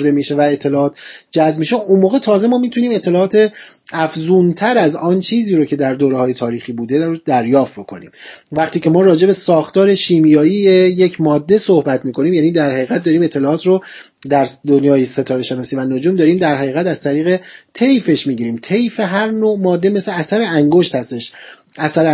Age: 30-49